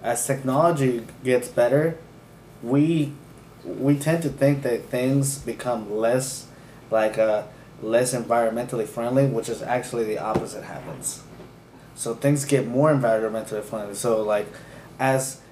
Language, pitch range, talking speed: English, 115-140 Hz, 130 wpm